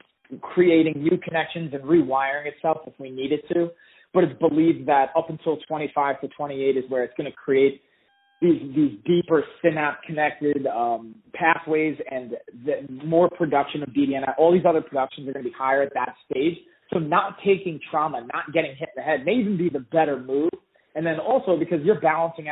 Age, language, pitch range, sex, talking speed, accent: 20-39, English, 140-170 Hz, male, 190 wpm, American